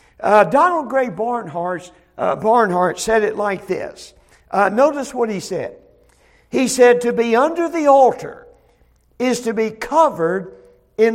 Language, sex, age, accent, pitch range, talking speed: English, male, 60-79, American, 195-285 Hz, 140 wpm